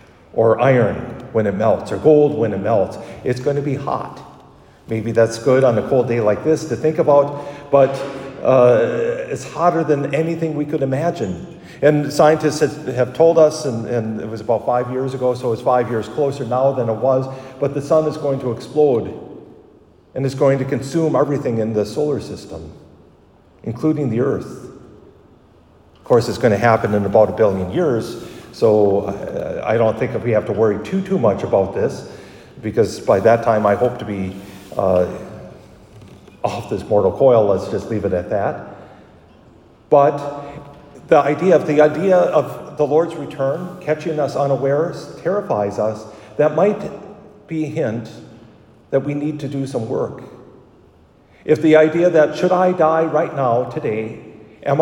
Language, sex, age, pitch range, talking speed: English, male, 50-69, 115-155 Hz, 170 wpm